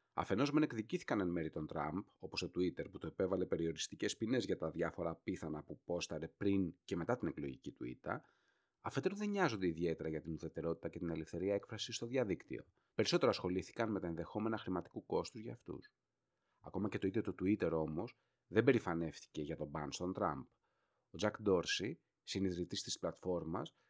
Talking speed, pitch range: 175 wpm, 85-120 Hz